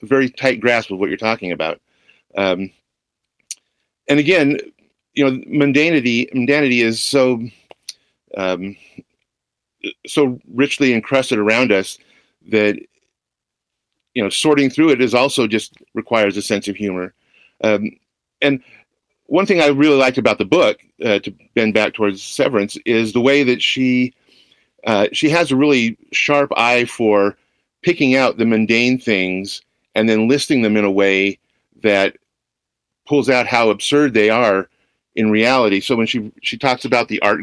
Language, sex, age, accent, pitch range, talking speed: English, male, 50-69, American, 110-135 Hz, 155 wpm